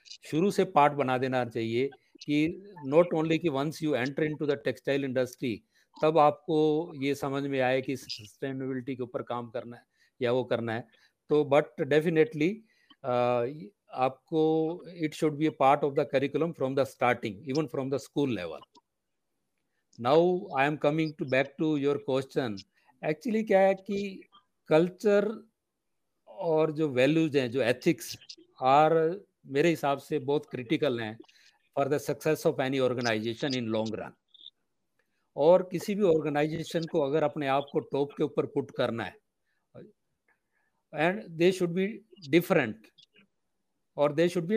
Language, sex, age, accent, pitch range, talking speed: Hindi, male, 50-69, native, 135-170 Hz, 145 wpm